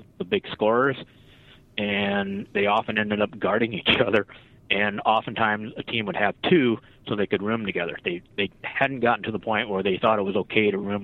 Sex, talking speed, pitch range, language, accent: male, 205 wpm, 105-130 Hz, English, American